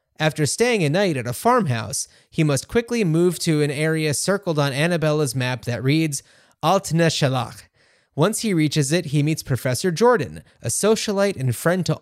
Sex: male